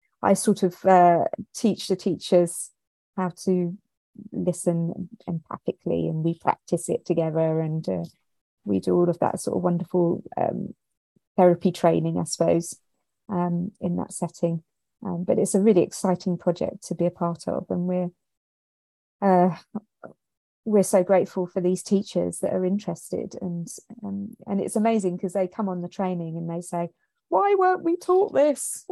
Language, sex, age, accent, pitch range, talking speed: English, female, 30-49, British, 175-235 Hz, 160 wpm